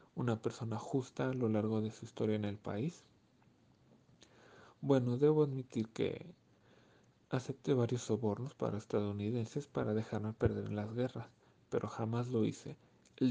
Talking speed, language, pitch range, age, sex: 145 wpm, English, 110-130 Hz, 40-59, male